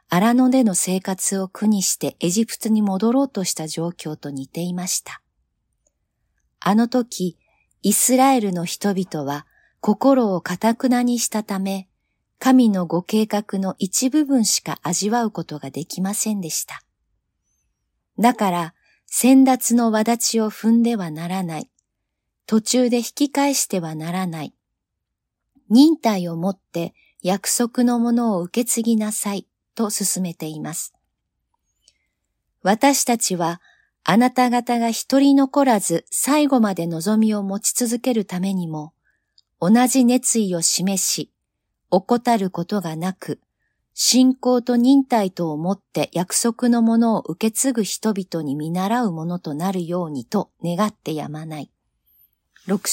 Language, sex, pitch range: Japanese, female, 175-240 Hz